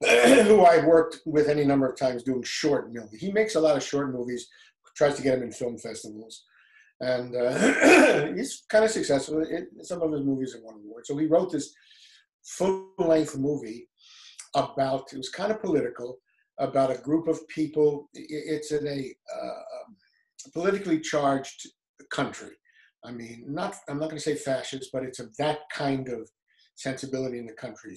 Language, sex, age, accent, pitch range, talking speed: English, male, 50-69, American, 125-160 Hz, 175 wpm